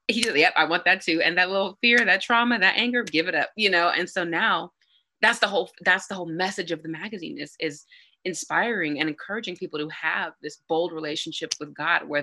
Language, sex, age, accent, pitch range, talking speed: English, female, 30-49, American, 160-235 Hz, 230 wpm